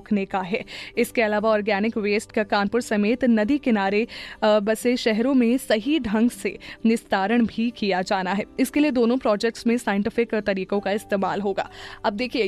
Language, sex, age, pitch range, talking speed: Hindi, female, 20-39, 215-280 Hz, 170 wpm